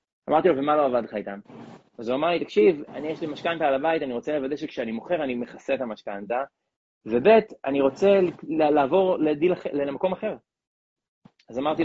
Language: Hebrew